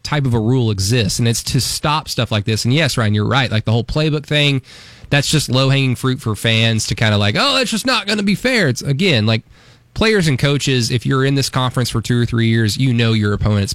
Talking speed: 260 wpm